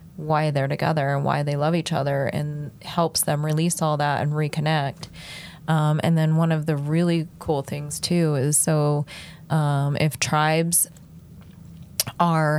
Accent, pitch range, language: American, 145-165 Hz, English